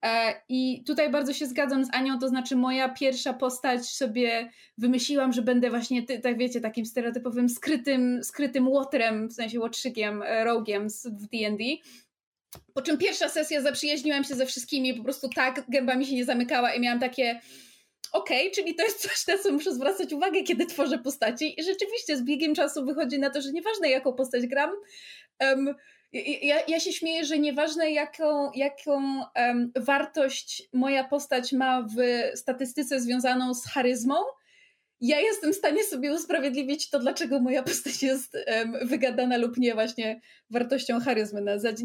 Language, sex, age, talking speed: Polish, female, 20-39, 165 wpm